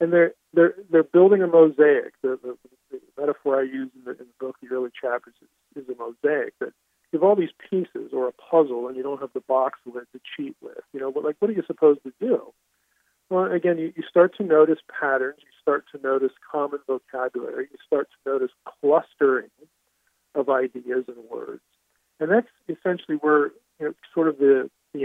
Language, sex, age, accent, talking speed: English, male, 50-69, American, 210 wpm